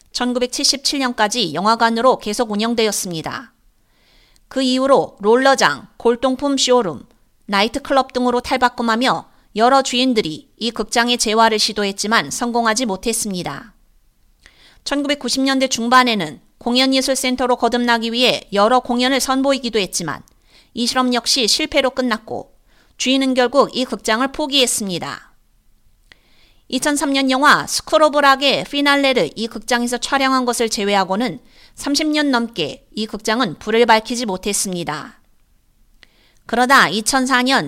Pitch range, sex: 220-260 Hz, female